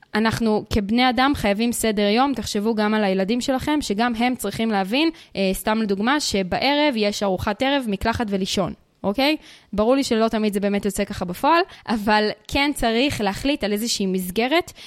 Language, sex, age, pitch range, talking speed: Hebrew, female, 20-39, 200-255 Hz, 165 wpm